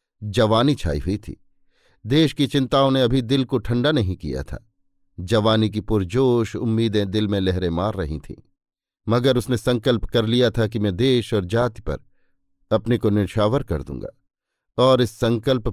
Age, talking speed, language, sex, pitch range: 50-69, 170 wpm, Hindi, male, 100-130 Hz